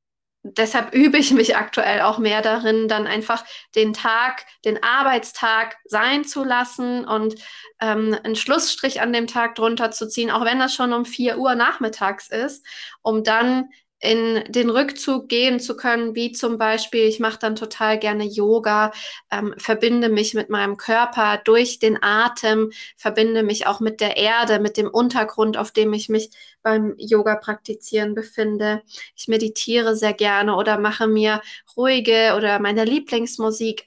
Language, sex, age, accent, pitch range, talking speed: German, female, 20-39, German, 215-245 Hz, 160 wpm